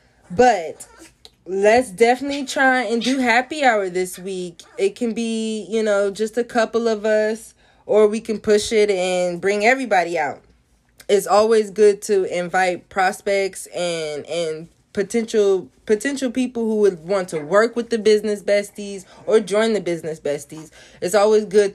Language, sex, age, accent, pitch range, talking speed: English, female, 20-39, American, 180-235 Hz, 155 wpm